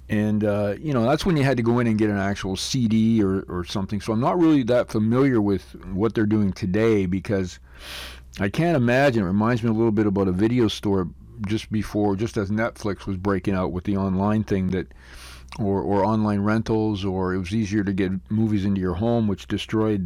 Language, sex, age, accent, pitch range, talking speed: English, male, 50-69, American, 95-110 Hz, 220 wpm